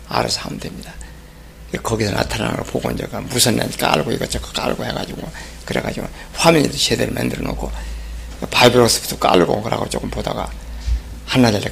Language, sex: Korean, male